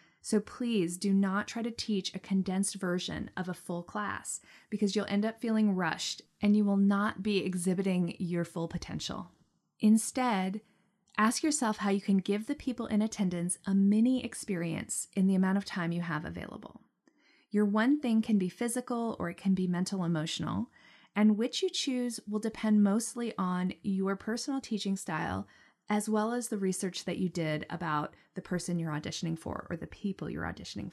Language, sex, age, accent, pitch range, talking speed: English, female, 30-49, American, 180-220 Hz, 180 wpm